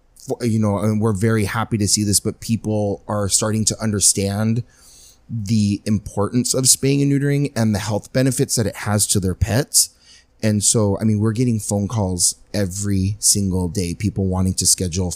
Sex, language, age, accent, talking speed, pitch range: male, English, 30-49, American, 180 wpm, 95-110 Hz